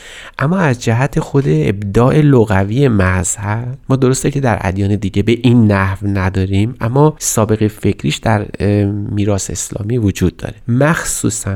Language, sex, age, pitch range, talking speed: Persian, male, 30-49, 100-135 Hz, 135 wpm